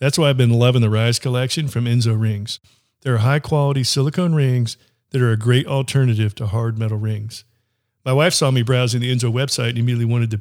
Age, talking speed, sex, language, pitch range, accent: 40-59, 210 wpm, male, English, 115-140 Hz, American